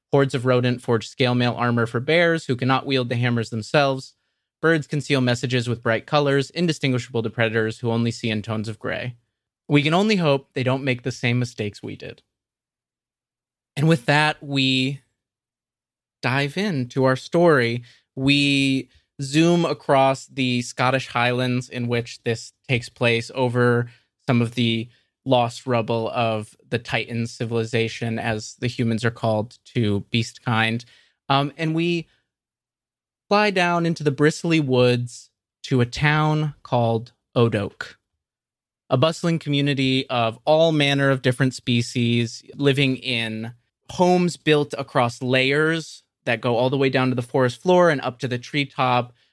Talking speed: 150 wpm